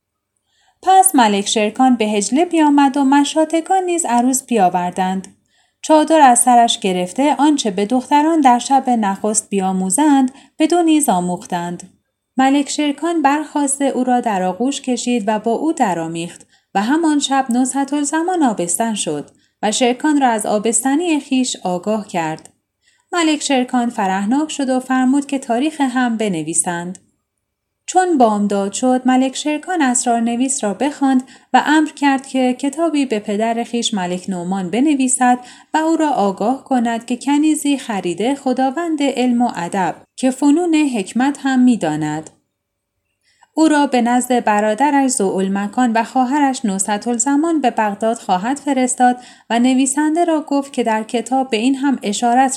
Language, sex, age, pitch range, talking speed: Persian, female, 10-29, 215-280 Hz, 145 wpm